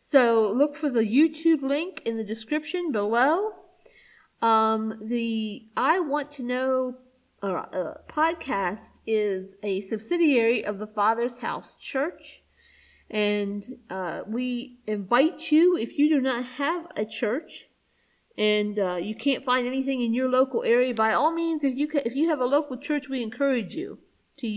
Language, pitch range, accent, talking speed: English, 220-290 Hz, American, 155 wpm